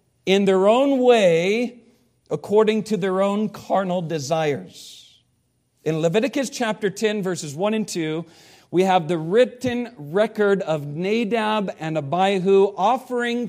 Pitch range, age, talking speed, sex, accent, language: 145-200 Hz, 50-69, 125 wpm, male, American, English